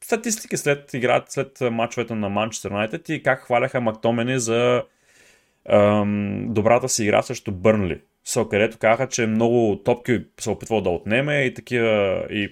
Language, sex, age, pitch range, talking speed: Bulgarian, male, 20-39, 110-140 Hz, 150 wpm